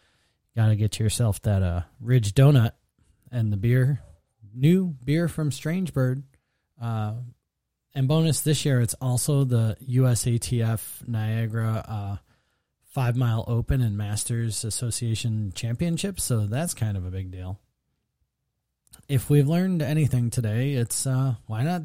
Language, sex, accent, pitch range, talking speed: English, male, American, 105-130 Hz, 135 wpm